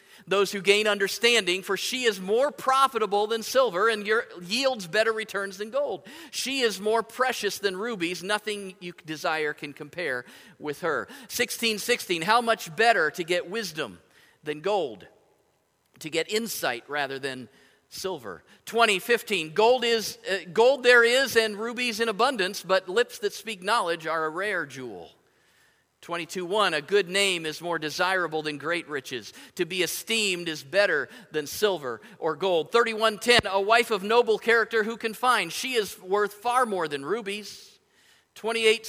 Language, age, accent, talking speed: English, 50-69, American, 155 wpm